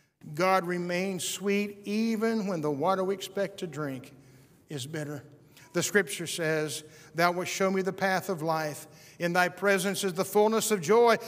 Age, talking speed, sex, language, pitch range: 50-69, 170 wpm, male, English, 155-205 Hz